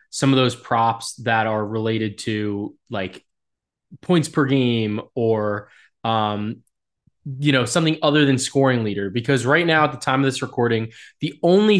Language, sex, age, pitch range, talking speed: English, male, 20-39, 115-145 Hz, 165 wpm